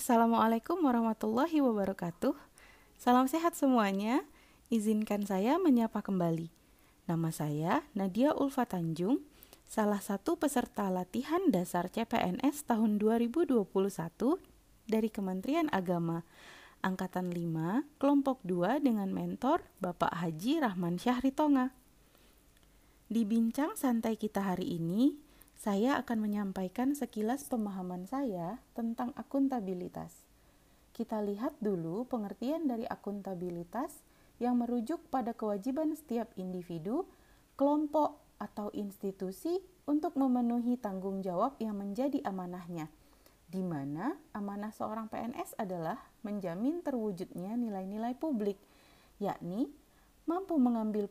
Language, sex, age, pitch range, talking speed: Indonesian, female, 30-49, 195-275 Hz, 100 wpm